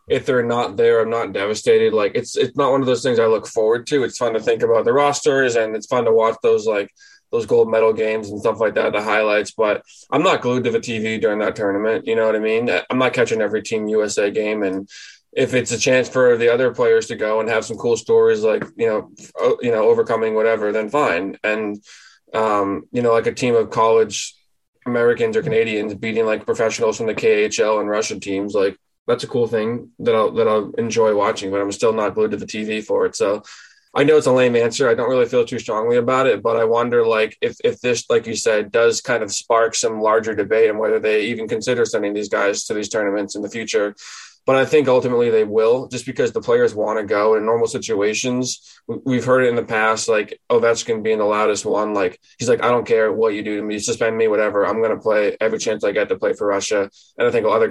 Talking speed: 250 wpm